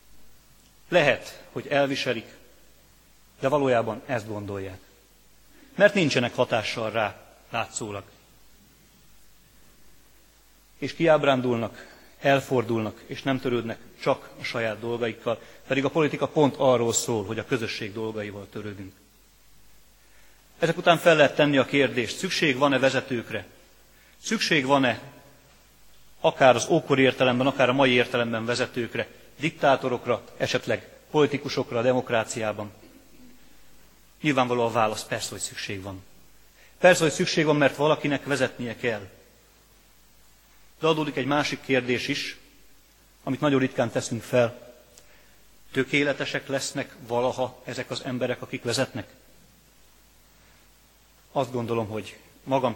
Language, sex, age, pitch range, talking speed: Hungarian, male, 30-49, 115-140 Hz, 110 wpm